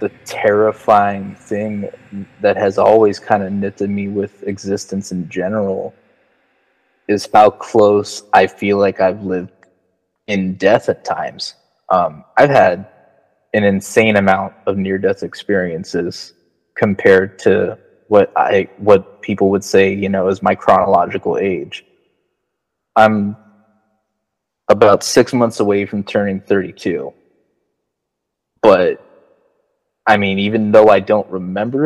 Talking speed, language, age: 125 wpm, English, 20-39